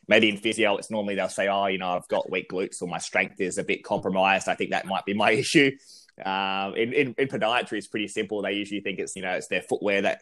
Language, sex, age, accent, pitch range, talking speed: English, male, 20-39, Australian, 95-100 Hz, 280 wpm